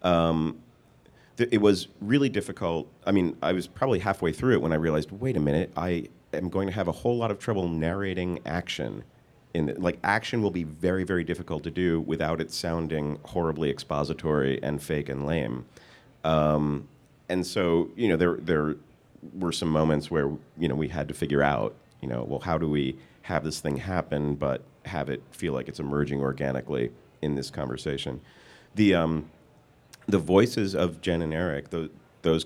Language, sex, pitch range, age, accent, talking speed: English, male, 70-85 Hz, 40-59, American, 185 wpm